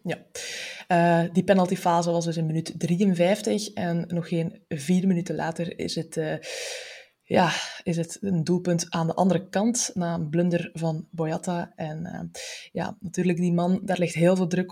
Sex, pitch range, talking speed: female, 160-185 Hz, 175 wpm